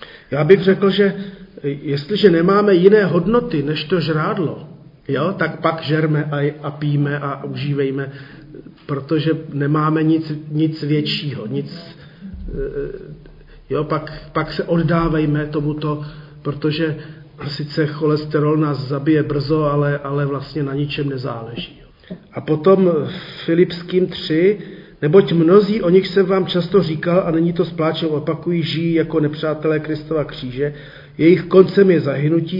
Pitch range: 150-175 Hz